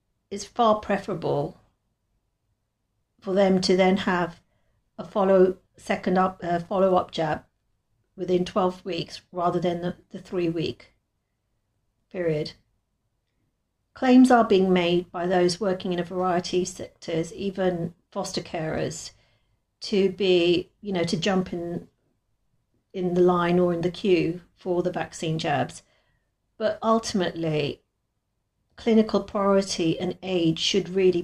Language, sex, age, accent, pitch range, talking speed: English, female, 50-69, British, 160-190 Hz, 125 wpm